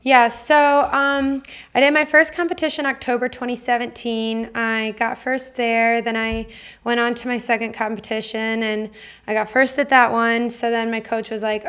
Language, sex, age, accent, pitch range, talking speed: English, female, 20-39, American, 210-245 Hz, 185 wpm